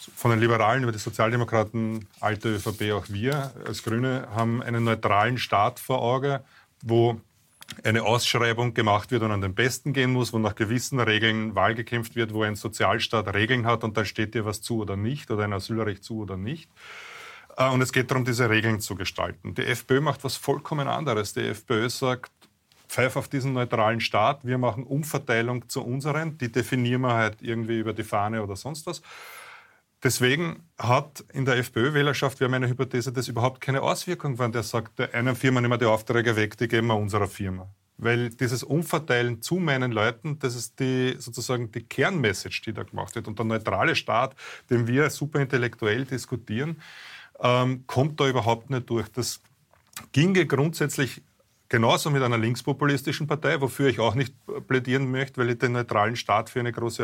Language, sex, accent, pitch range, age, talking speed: German, male, Austrian, 110-135 Hz, 30-49, 180 wpm